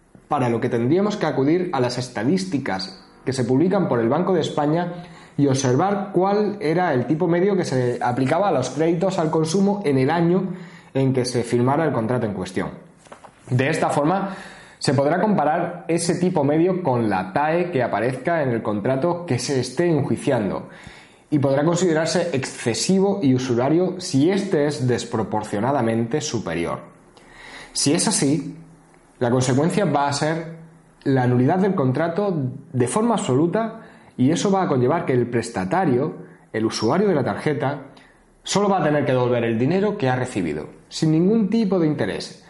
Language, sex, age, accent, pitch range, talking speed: Spanish, male, 20-39, Spanish, 125-180 Hz, 170 wpm